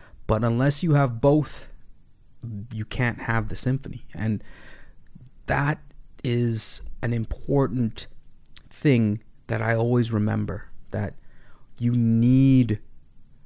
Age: 30-49